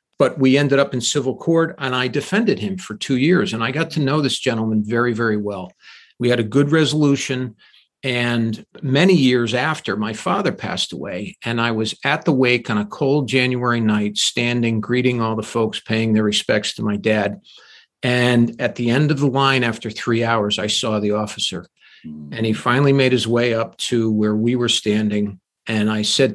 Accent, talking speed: American, 200 wpm